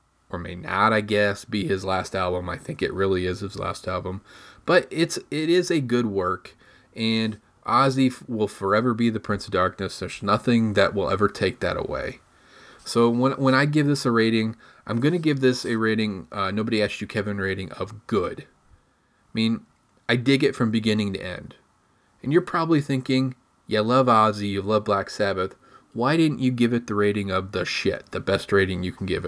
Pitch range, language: 100-120 Hz, English